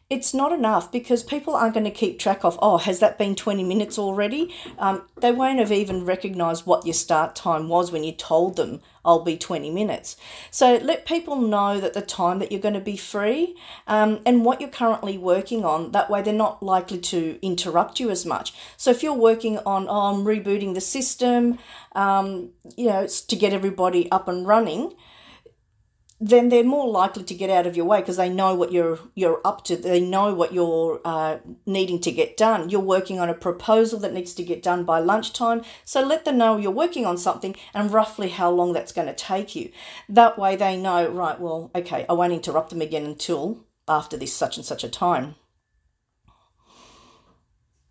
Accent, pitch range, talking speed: Australian, 175-225 Hz, 205 wpm